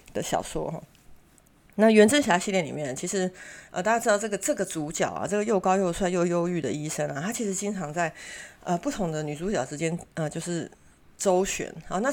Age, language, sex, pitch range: 30-49, Chinese, female, 155-195 Hz